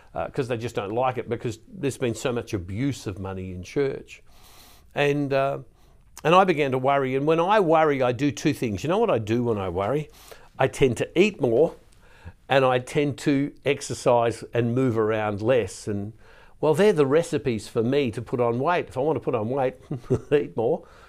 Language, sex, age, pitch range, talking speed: English, male, 50-69, 110-140 Hz, 210 wpm